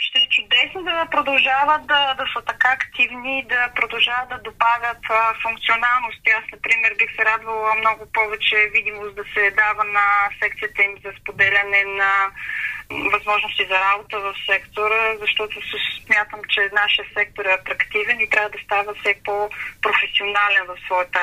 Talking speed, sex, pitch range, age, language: 150 wpm, female, 200-255 Hz, 20-39, Bulgarian